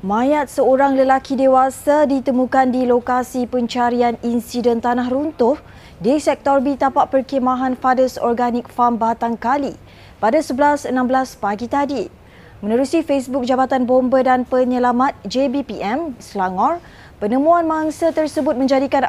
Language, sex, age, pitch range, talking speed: Malay, female, 20-39, 245-280 Hz, 115 wpm